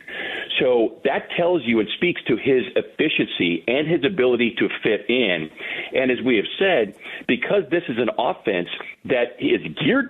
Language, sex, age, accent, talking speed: English, male, 50-69, American, 165 wpm